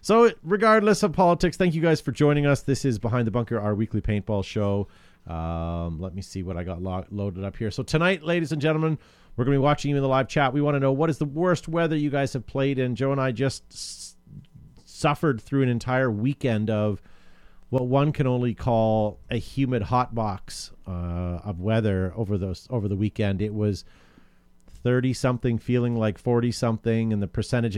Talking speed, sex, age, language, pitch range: 205 wpm, male, 40-59, English, 100-135 Hz